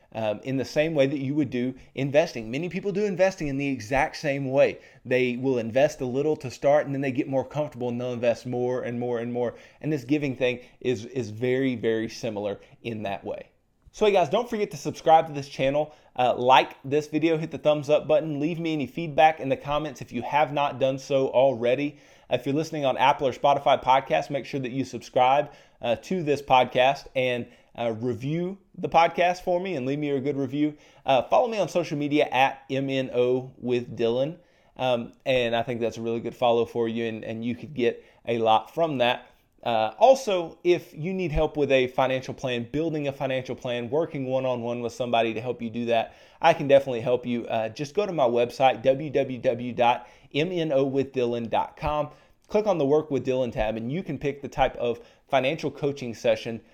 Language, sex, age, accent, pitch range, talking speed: English, male, 30-49, American, 120-150 Hz, 210 wpm